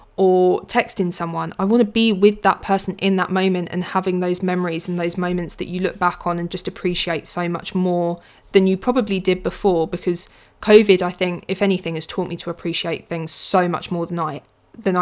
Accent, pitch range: British, 175-195 Hz